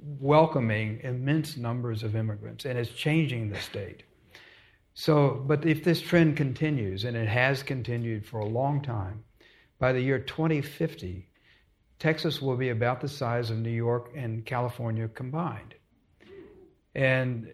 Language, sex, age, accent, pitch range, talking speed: English, male, 60-79, American, 115-140 Hz, 140 wpm